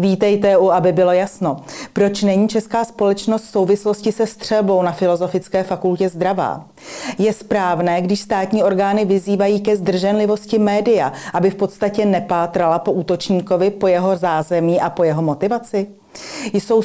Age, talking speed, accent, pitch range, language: 40-59, 140 wpm, native, 170-205 Hz, Czech